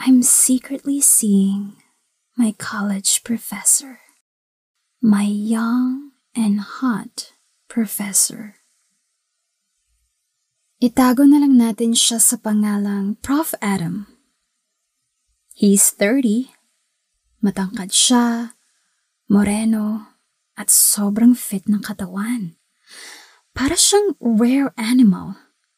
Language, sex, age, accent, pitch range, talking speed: Filipino, female, 20-39, native, 205-250 Hz, 80 wpm